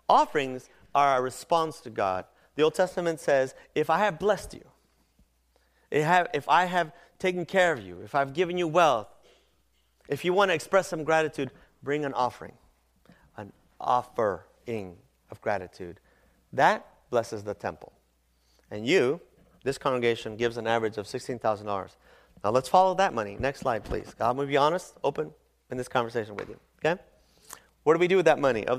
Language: English